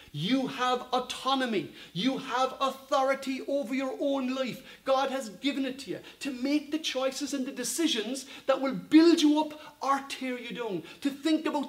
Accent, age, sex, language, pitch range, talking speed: British, 40-59, male, English, 190-285 Hz, 180 wpm